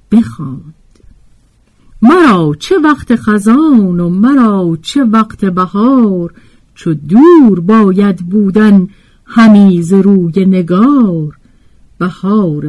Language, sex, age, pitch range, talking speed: Persian, female, 50-69, 165-260 Hz, 80 wpm